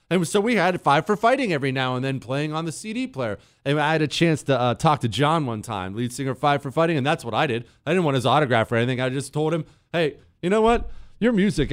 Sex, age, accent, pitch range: male, 40-59, American, 125-210 Hz